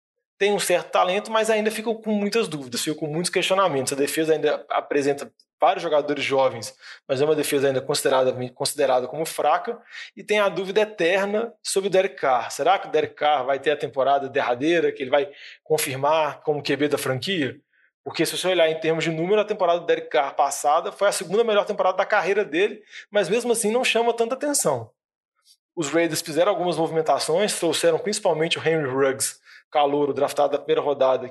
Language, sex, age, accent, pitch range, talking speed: Portuguese, male, 20-39, Brazilian, 155-205 Hz, 195 wpm